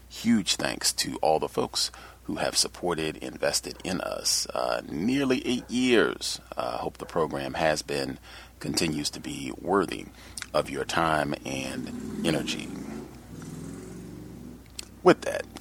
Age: 30-49